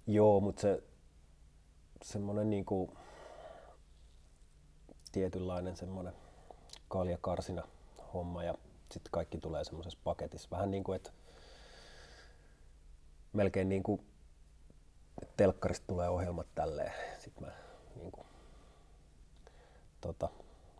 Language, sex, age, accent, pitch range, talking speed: Finnish, male, 30-49, native, 75-100 Hz, 75 wpm